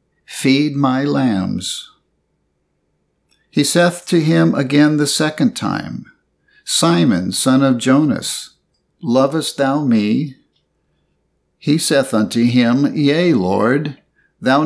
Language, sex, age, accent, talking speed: English, male, 60-79, American, 100 wpm